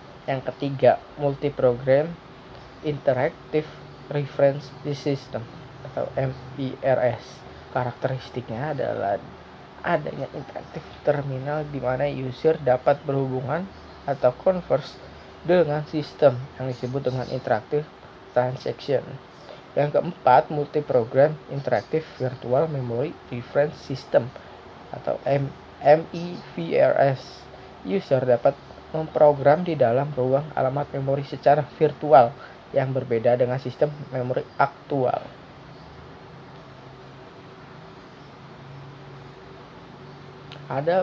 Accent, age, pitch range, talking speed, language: native, 20-39, 125-145 Hz, 80 wpm, Indonesian